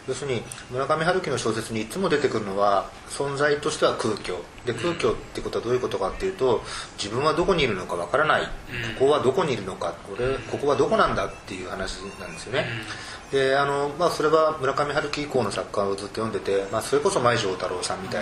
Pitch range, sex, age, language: 110-150 Hz, male, 30-49, Japanese